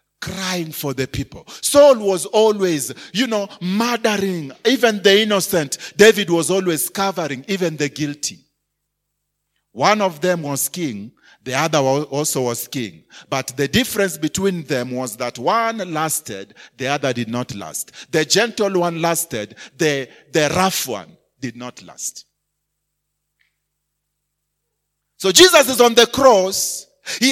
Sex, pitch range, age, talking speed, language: male, 145-230 Hz, 40-59, 135 wpm, English